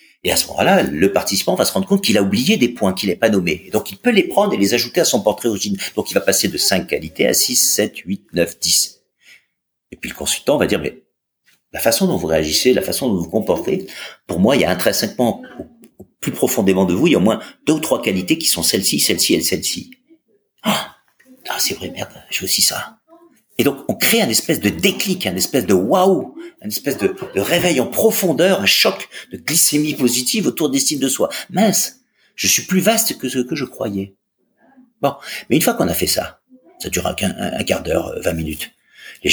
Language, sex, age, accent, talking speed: French, male, 50-69, French, 235 wpm